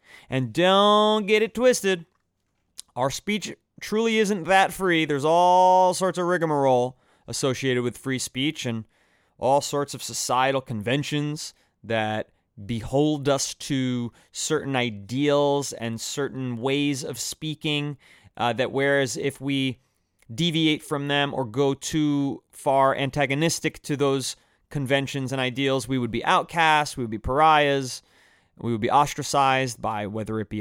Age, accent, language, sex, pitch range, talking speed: 30-49, American, English, male, 115-150 Hz, 140 wpm